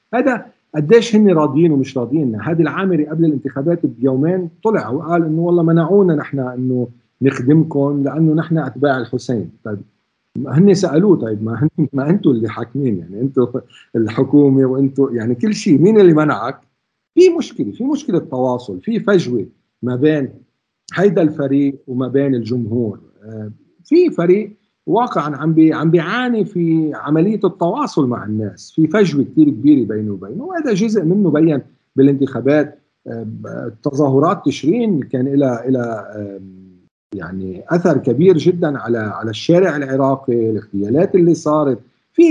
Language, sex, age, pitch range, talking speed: Arabic, male, 50-69, 125-180 Hz, 135 wpm